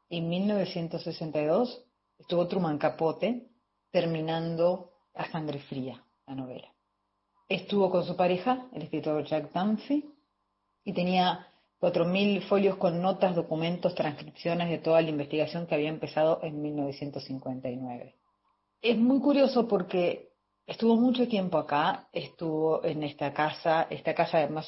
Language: Spanish